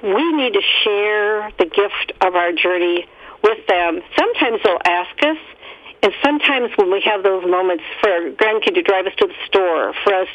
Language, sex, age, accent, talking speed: English, female, 60-79, American, 190 wpm